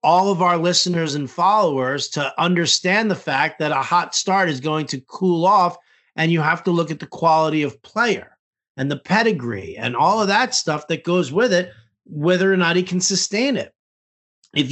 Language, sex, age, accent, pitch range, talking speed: English, male, 50-69, American, 145-185 Hz, 200 wpm